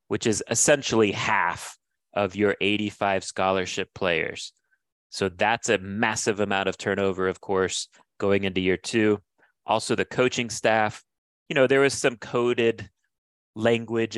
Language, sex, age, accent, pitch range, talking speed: English, male, 30-49, American, 95-110 Hz, 140 wpm